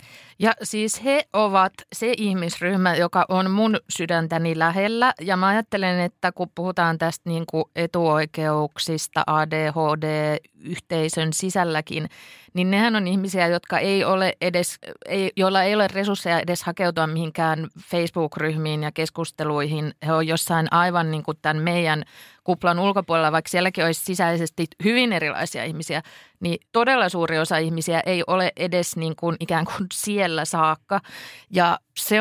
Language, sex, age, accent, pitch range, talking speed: Finnish, female, 20-39, native, 155-185 Hz, 140 wpm